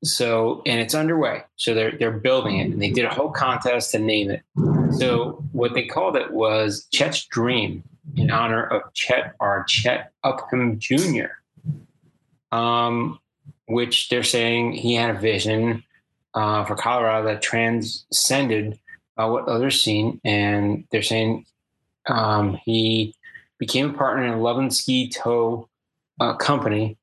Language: English